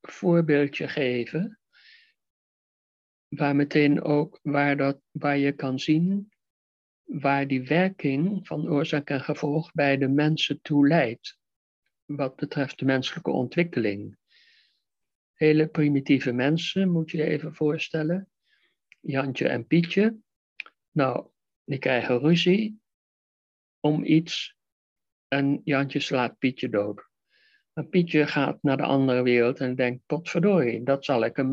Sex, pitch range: male, 135-160 Hz